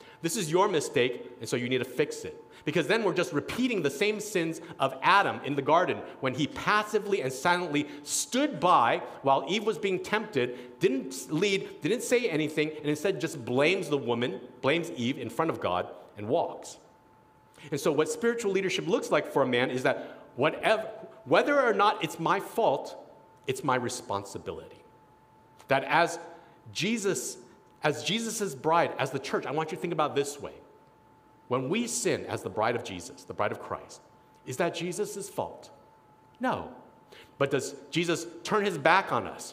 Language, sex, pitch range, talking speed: English, male, 135-195 Hz, 180 wpm